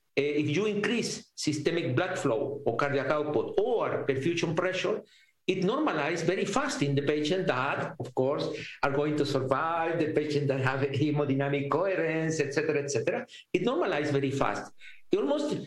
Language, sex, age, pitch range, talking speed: English, male, 50-69, 145-220 Hz, 165 wpm